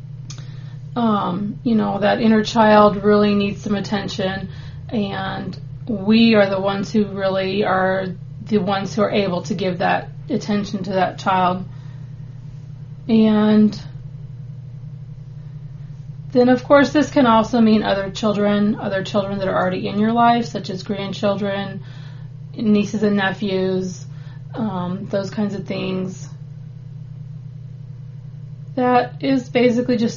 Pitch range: 140-215 Hz